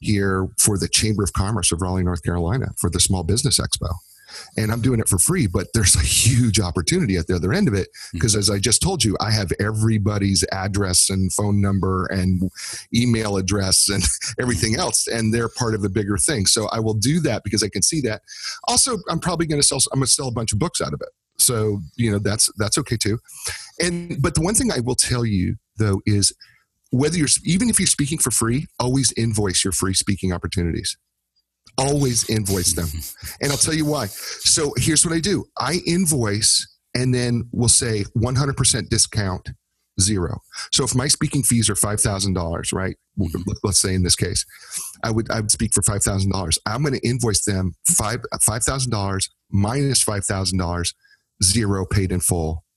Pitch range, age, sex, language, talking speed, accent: 95-125 Hz, 40-59, male, English, 195 wpm, American